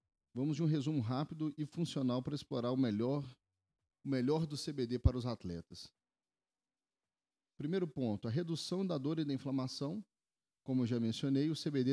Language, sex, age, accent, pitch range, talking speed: Portuguese, male, 40-59, Brazilian, 110-145 Hz, 160 wpm